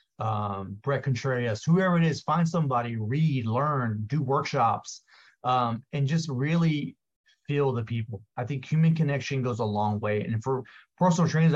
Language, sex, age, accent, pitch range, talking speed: English, male, 30-49, American, 120-150 Hz, 155 wpm